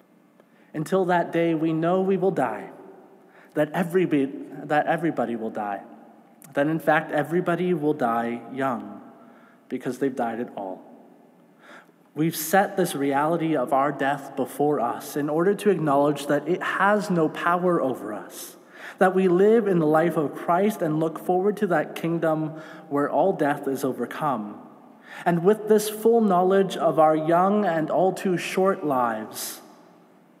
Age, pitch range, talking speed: 30-49, 140-180 Hz, 155 wpm